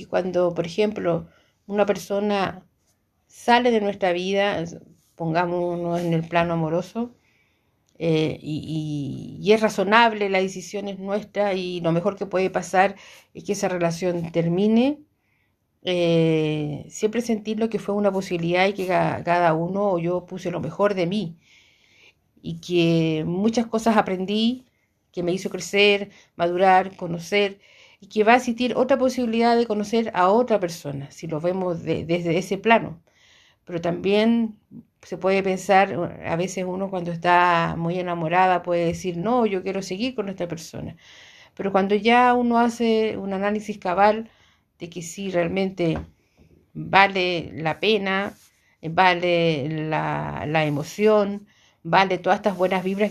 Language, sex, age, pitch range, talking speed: Spanish, female, 50-69, 170-205 Hz, 145 wpm